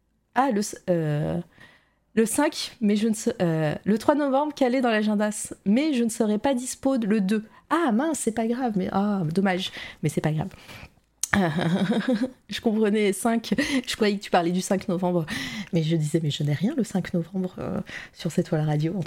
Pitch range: 170-230 Hz